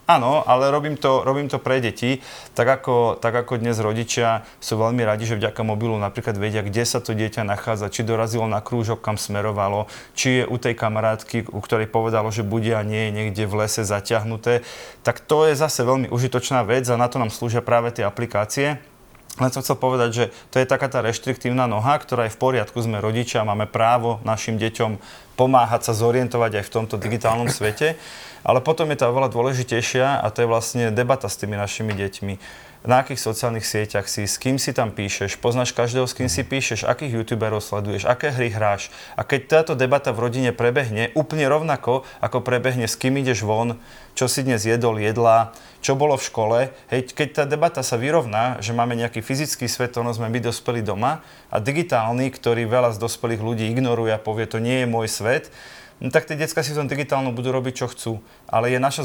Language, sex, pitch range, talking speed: Slovak, male, 115-130 Hz, 205 wpm